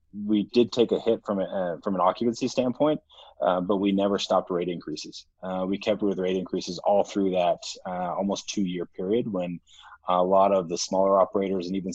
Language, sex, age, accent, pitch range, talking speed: English, male, 20-39, American, 90-100 Hz, 205 wpm